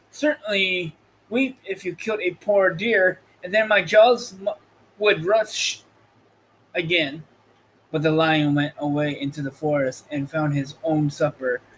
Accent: American